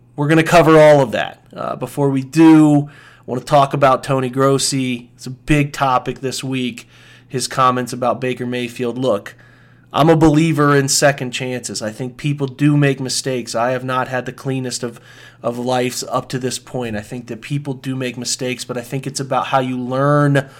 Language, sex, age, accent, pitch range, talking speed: English, male, 30-49, American, 125-140 Hz, 205 wpm